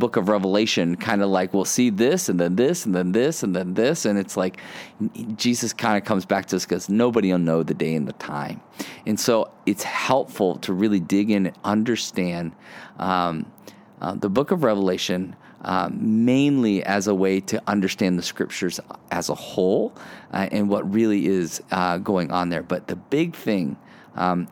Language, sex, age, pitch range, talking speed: English, male, 30-49, 95-115 Hz, 195 wpm